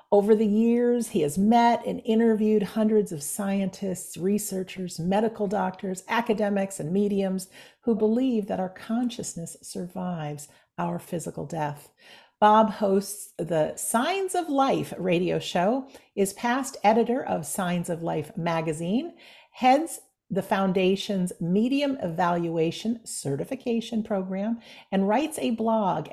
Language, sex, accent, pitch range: English, female, American, 175-230 Hz